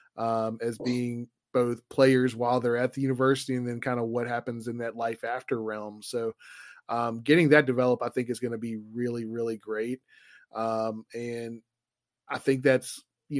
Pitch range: 120-135 Hz